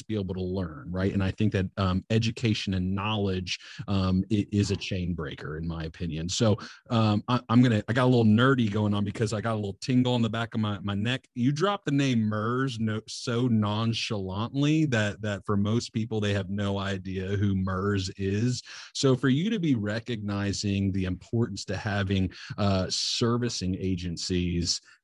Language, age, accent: English, 30-49, American